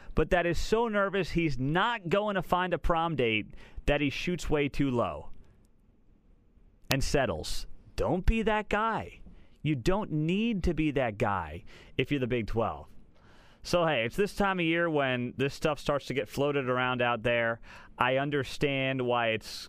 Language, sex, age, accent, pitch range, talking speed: English, male, 30-49, American, 115-160 Hz, 175 wpm